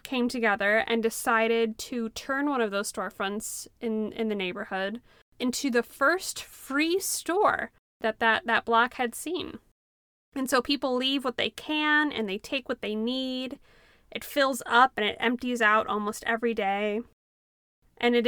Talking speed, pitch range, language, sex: 165 wpm, 215-255 Hz, English, female